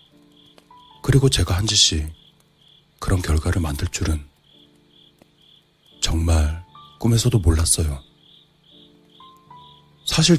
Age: 40-59